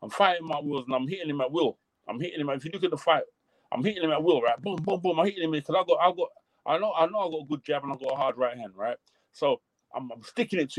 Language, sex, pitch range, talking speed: English, male, 145-185 Hz, 330 wpm